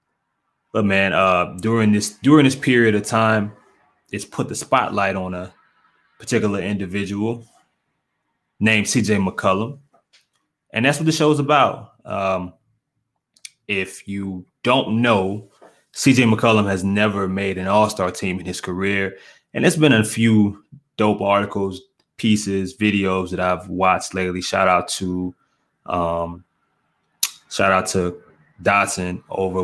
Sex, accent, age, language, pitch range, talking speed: male, American, 20-39, English, 90-110 Hz, 130 wpm